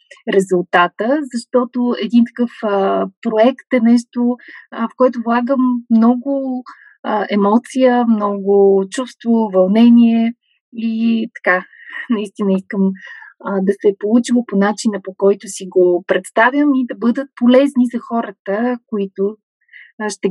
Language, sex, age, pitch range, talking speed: Bulgarian, female, 30-49, 200-260 Hz, 125 wpm